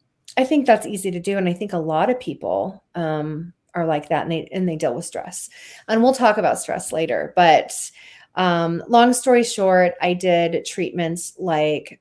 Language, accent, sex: English, American, female